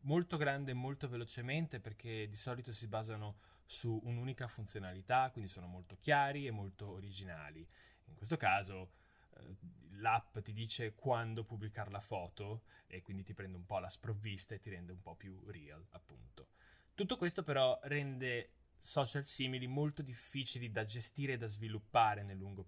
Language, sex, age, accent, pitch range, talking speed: Italian, male, 20-39, native, 95-125 Hz, 160 wpm